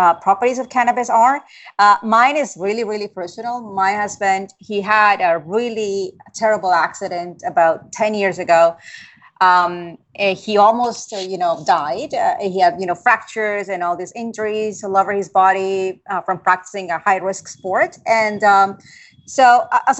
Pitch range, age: 190-235 Hz, 30-49